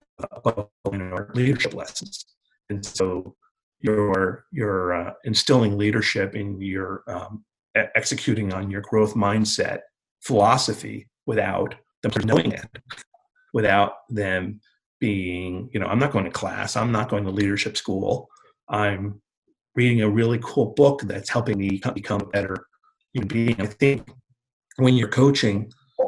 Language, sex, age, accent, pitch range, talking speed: English, male, 30-49, American, 100-120 Hz, 130 wpm